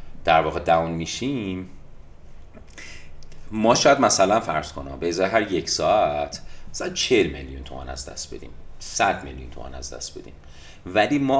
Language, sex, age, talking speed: Persian, male, 30-49, 145 wpm